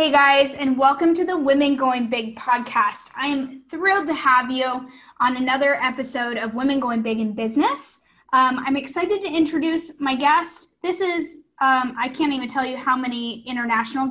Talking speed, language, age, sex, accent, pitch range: 185 wpm, English, 10-29, female, American, 250-305 Hz